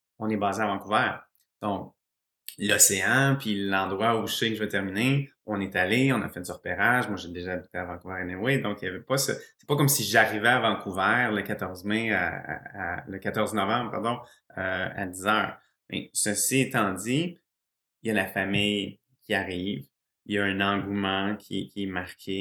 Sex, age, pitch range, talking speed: male, 30-49, 100-120 Hz, 210 wpm